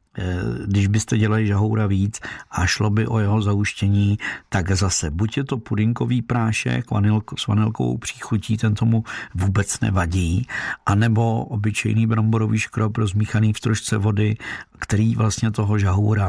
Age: 50-69